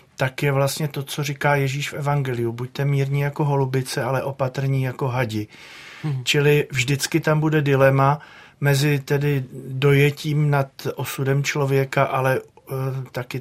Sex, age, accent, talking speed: male, 40-59, native, 130 wpm